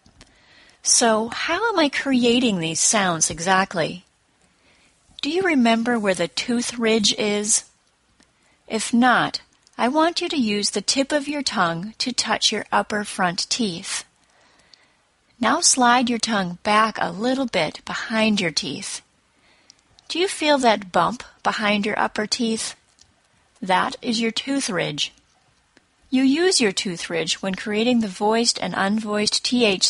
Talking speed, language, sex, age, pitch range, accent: 140 wpm, English, female, 30-49, 195-250 Hz, American